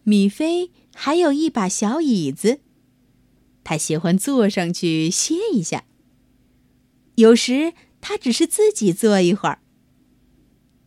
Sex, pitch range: female, 195-300 Hz